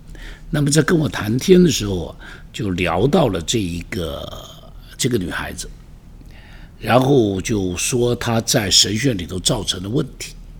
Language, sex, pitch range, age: Chinese, male, 105-165 Hz, 60-79